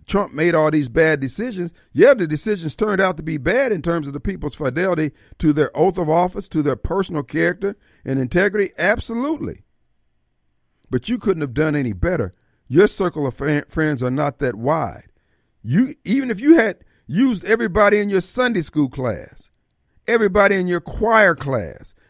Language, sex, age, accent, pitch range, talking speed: English, male, 50-69, American, 120-175 Hz, 175 wpm